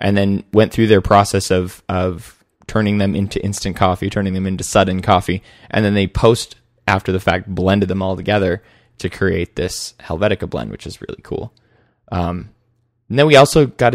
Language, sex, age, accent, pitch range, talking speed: English, male, 20-39, American, 95-110 Hz, 190 wpm